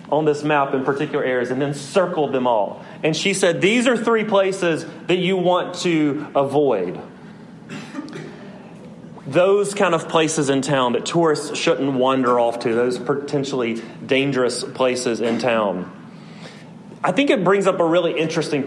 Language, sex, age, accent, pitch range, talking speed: English, male, 30-49, American, 140-195 Hz, 155 wpm